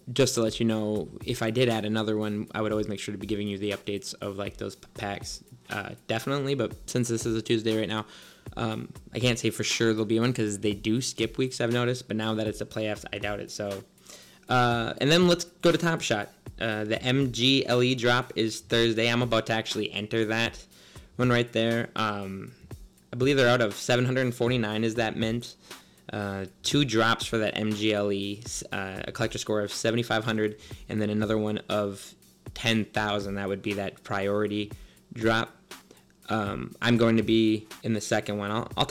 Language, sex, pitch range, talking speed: English, male, 105-120 Hz, 200 wpm